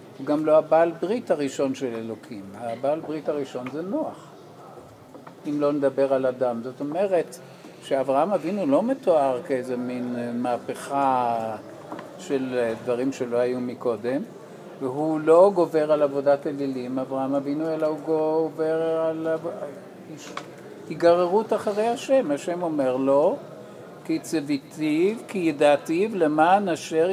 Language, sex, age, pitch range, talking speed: Hebrew, male, 50-69, 135-175 Hz, 120 wpm